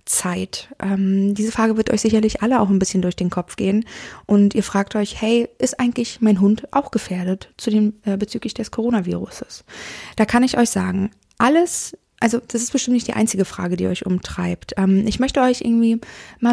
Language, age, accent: German, 20-39, German